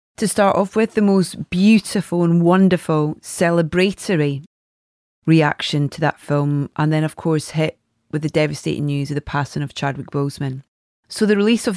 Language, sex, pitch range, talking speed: English, female, 150-185 Hz, 170 wpm